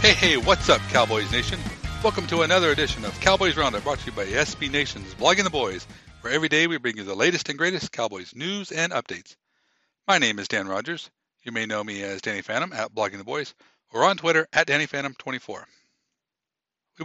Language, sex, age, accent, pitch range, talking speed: English, male, 60-79, American, 110-165 Hz, 210 wpm